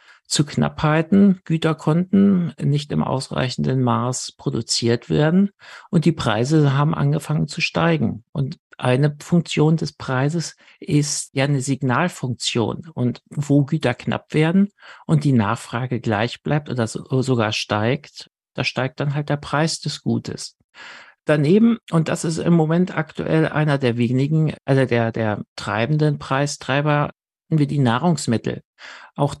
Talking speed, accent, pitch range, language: 135 wpm, German, 130-160 Hz, German